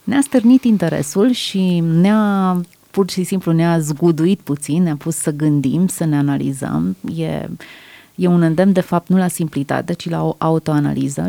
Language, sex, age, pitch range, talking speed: Romanian, female, 30-49, 155-180 Hz, 165 wpm